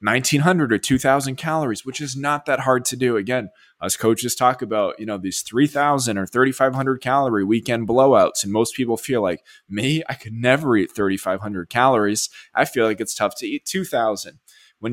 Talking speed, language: 185 wpm, English